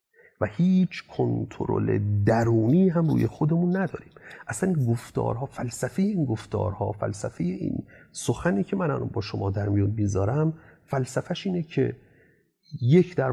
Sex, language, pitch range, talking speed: male, Persian, 105-140 Hz, 130 wpm